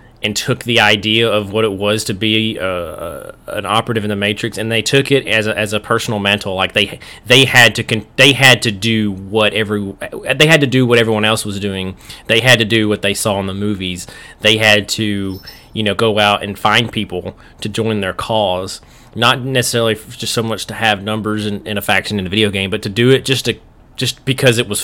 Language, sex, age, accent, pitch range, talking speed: English, male, 30-49, American, 100-115 Hz, 235 wpm